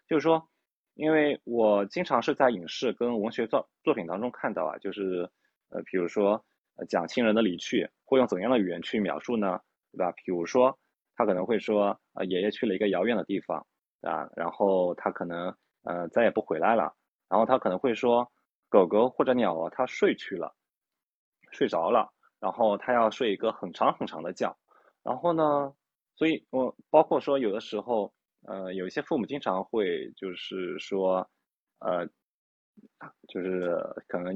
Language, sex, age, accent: Chinese, male, 20-39, native